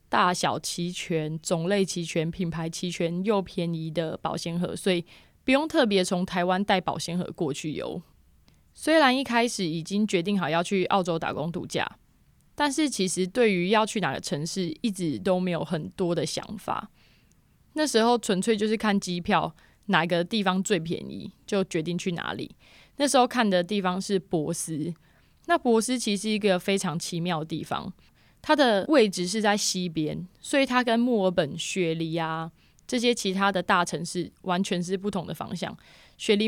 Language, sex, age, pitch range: Chinese, female, 20-39, 175-220 Hz